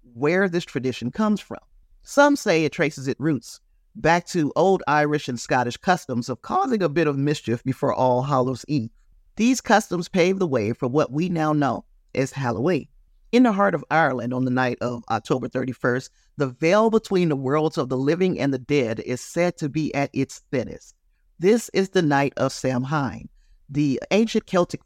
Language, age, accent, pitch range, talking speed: English, 40-59, American, 130-180 Hz, 190 wpm